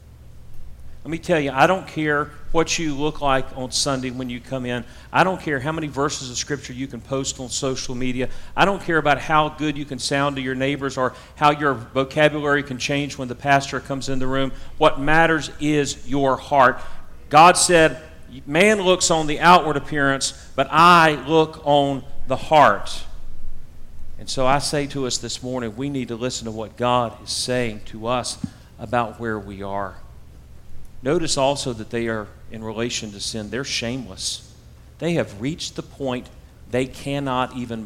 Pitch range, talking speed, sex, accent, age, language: 120-150 Hz, 185 wpm, male, American, 40-59, English